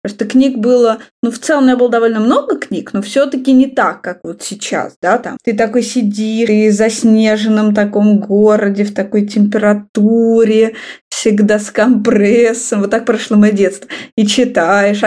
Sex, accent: female, native